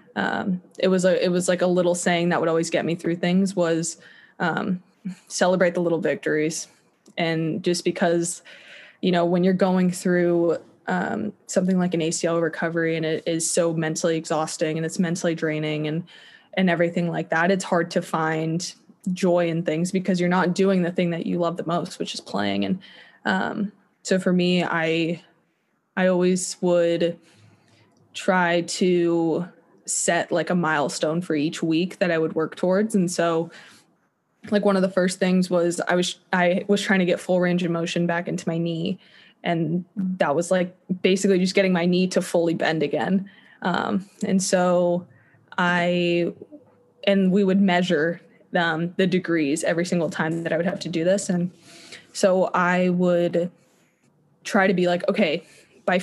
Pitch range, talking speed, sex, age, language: 165-185 Hz, 175 wpm, female, 20-39, English